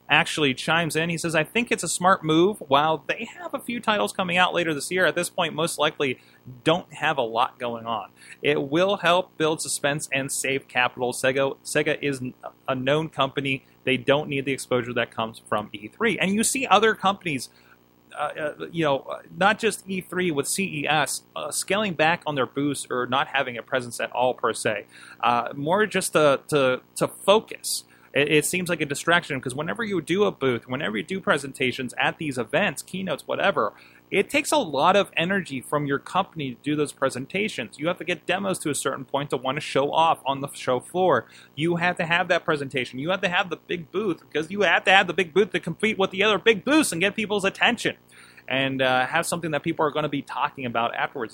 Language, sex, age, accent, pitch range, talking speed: English, male, 30-49, American, 130-180 Hz, 215 wpm